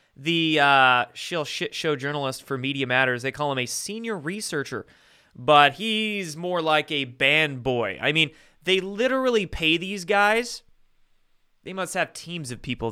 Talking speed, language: 165 wpm, English